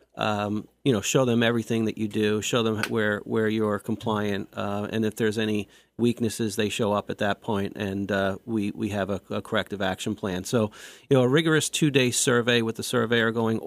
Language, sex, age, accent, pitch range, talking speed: English, male, 40-59, American, 110-125 Hz, 215 wpm